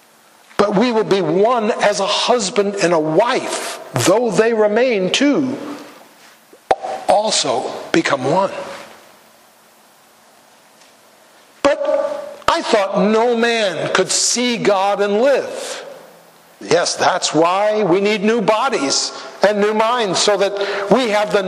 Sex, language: male, English